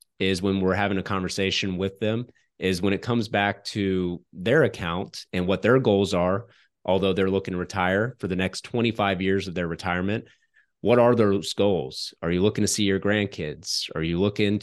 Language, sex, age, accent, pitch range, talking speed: English, male, 30-49, American, 95-110 Hz, 195 wpm